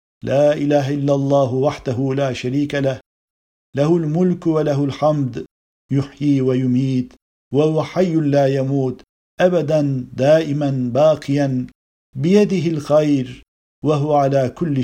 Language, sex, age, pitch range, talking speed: Turkish, male, 50-69, 135-155 Hz, 105 wpm